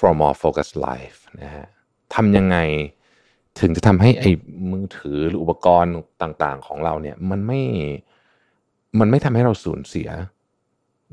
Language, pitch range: Thai, 80-105 Hz